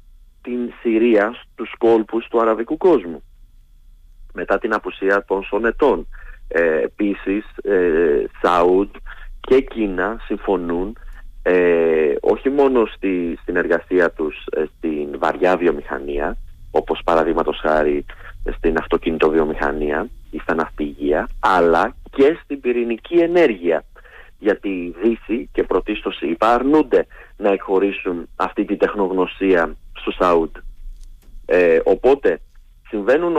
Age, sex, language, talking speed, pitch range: 30-49, male, Greek, 100 wpm, 85-130 Hz